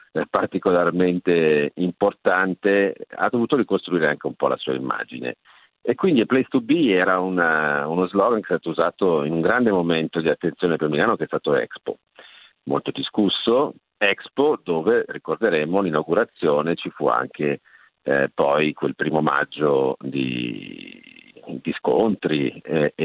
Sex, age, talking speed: male, 50-69, 140 wpm